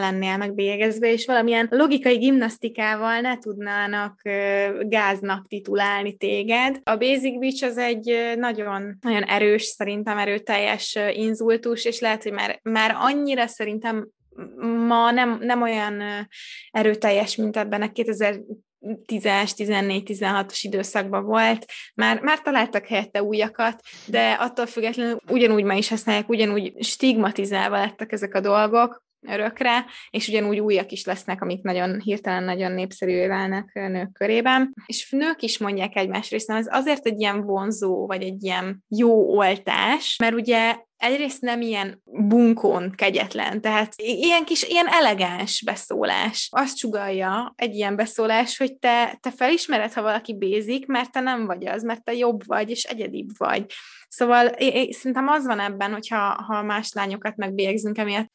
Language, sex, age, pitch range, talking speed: Hungarian, female, 20-39, 200-235 Hz, 145 wpm